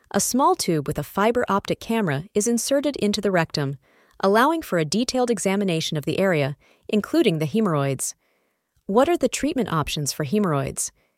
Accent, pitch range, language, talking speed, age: American, 165-245 Hz, English, 165 wpm, 30-49